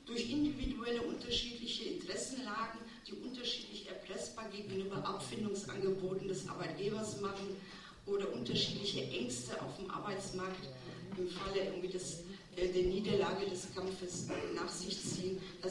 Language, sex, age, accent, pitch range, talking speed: German, female, 50-69, German, 185-235 Hz, 105 wpm